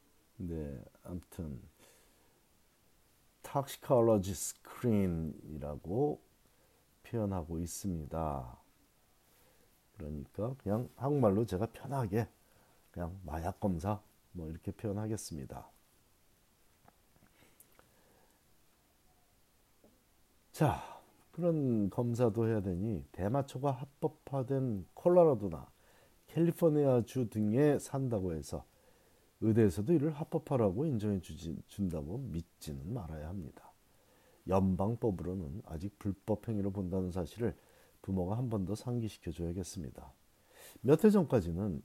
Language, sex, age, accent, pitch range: Korean, male, 50-69, native, 90-125 Hz